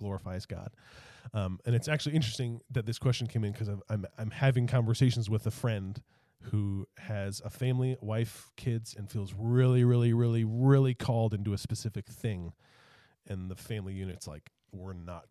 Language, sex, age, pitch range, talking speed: English, male, 30-49, 105-125 Hz, 175 wpm